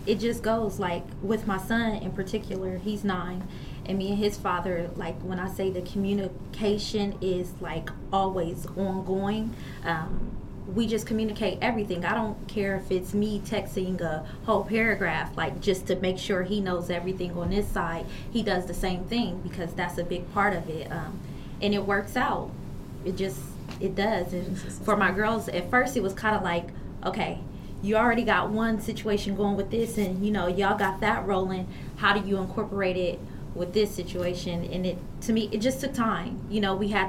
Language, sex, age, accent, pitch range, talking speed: English, female, 20-39, American, 180-210 Hz, 190 wpm